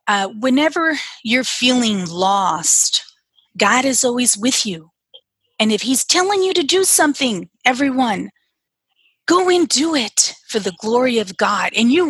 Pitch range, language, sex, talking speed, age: 205-260 Hz, English, female, 150 wpm, 30-49